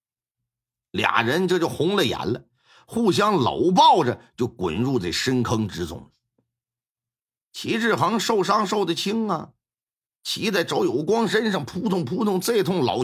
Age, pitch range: 50-69, 120-190 Hz